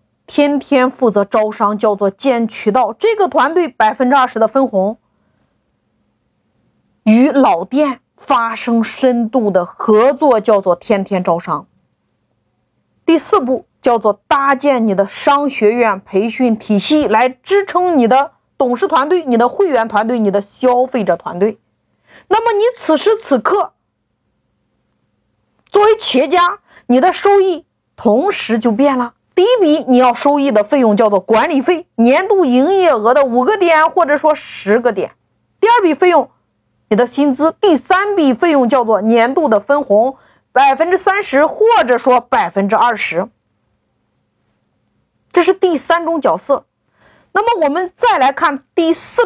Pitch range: 225-335 Hz